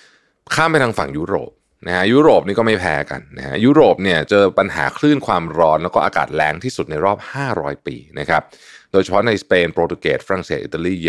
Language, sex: Thai, male